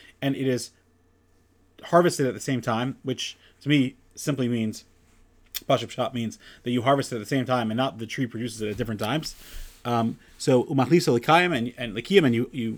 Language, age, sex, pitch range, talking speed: English, 30-49, male, 115-150 Hz, 190 wpm